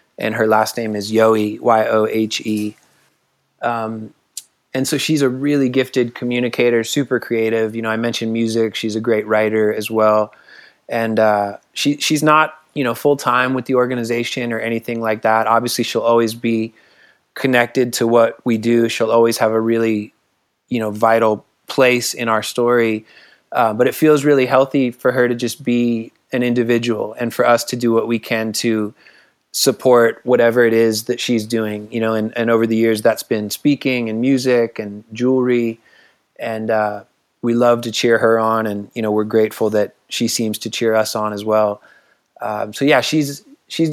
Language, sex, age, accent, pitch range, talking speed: English, male, 20-39, American, 110-125 Hz, 185 wpm